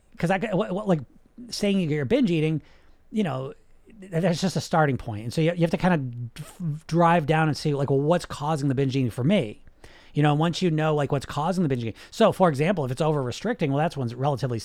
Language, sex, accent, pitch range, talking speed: English, male, American, 135-180 Hz, 230 wpm